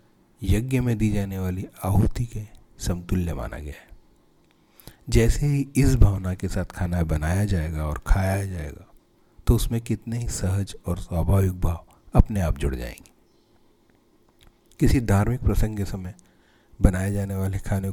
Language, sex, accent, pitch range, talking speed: Hindi, male, native, 85-105 Hz, 145 wpm